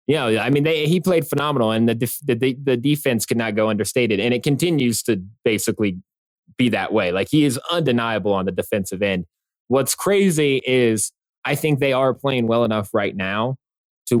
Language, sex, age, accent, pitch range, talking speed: English, male, 20-39, American, 100-125 Hz, 180 wpm